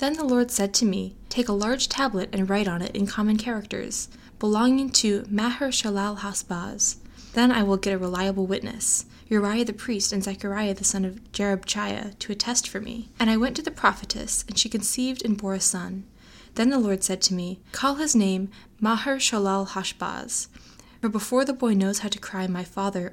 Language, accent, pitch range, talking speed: English, American, 195-225 Hz, 200 wpm